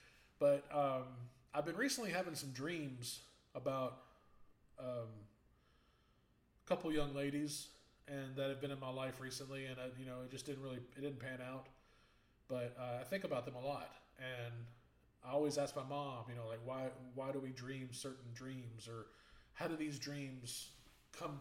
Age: 20-39